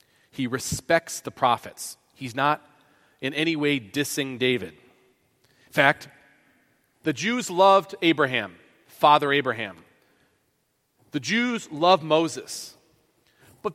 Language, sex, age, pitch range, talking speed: English, male, 40-59, 140-190 Hz, 105 wpm